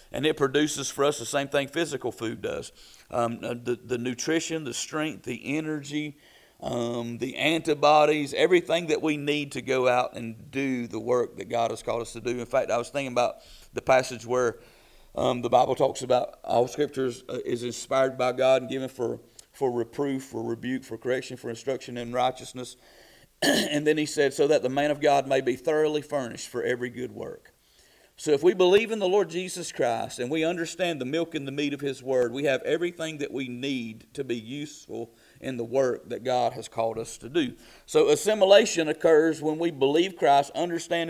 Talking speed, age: 200 wpm, 40-59